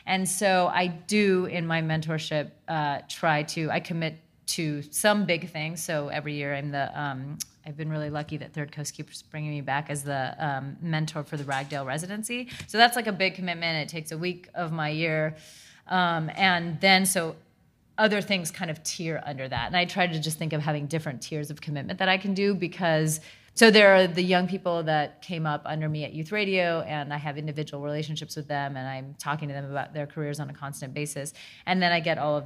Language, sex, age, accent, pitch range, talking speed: English, female, 30-49, American, 145-175 Hz, 225 wpm